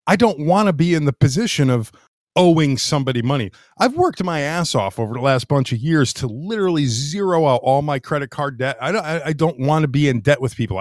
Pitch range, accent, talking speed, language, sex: 120-160 Hz, American, 240 wpm, English, male